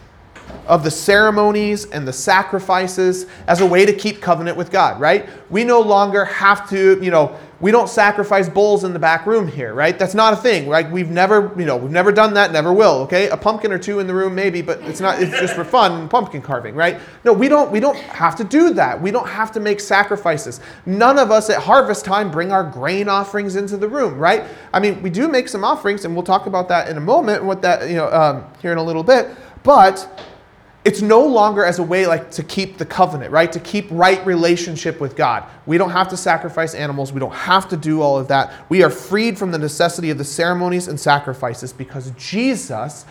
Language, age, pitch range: English, 30-49, 135-195 Hz